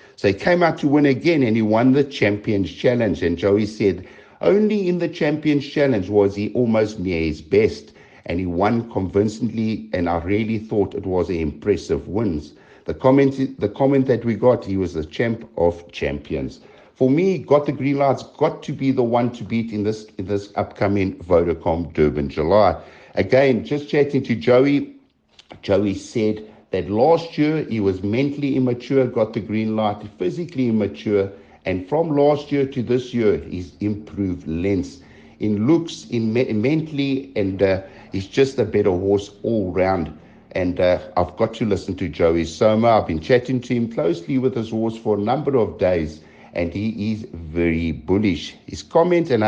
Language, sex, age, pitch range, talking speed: English, male, 60-79, 100-135 Hz, 180 wpm